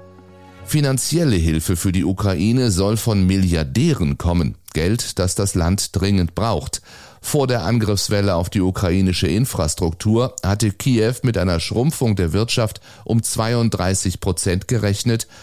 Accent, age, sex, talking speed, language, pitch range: German, 30-49, male, 130 wpm, German, 90-110 Hz